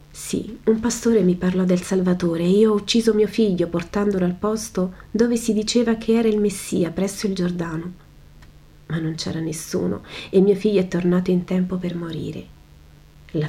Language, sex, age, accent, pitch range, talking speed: Italian, female, 30-49, native, 150-195 Hz, 180 wpm